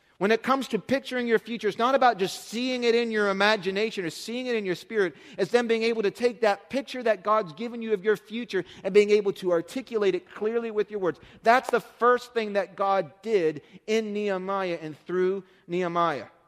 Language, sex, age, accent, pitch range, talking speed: English, male, 40-59, American, 145-210 Hz, 215 wpm